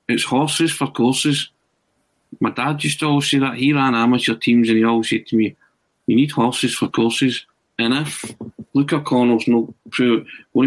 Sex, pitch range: male, 115-140 Hz